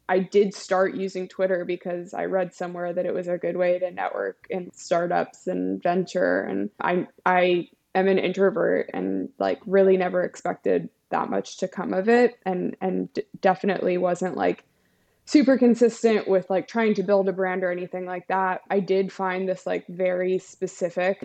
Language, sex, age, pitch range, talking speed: English, female, 20-39, 180-195 Hz, 180 wpm